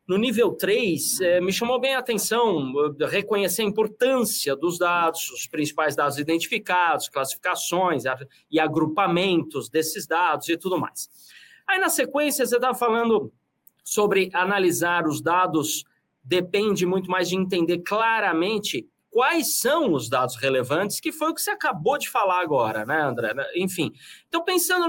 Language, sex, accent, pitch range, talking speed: Portuguese, male, Brazilian, 175-260 Hz, 145 wpm